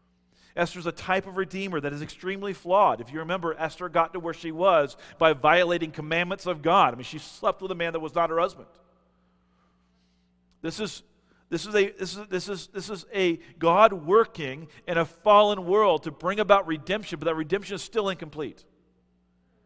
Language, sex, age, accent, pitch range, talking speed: English, male, 40-59, American, 150-200 Hz, 190 wpm